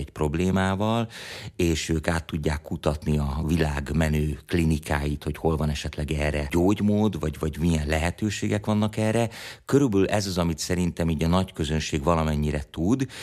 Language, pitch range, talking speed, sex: Hungarian, 80-95 Hz, 150 wpm, male